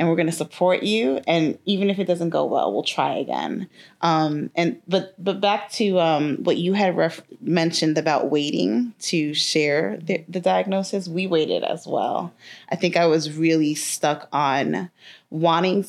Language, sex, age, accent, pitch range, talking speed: English, female, 20-39, American, 150-185 Hz, 180 wpm